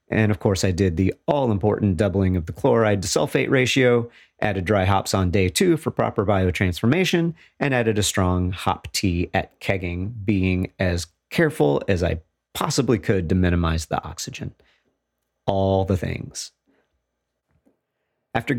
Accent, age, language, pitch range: American, 40-59, English, 95-130 Hz